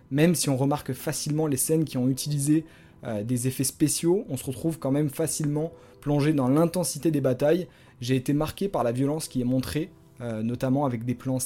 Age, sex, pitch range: 20-39, male, 130-155 Hz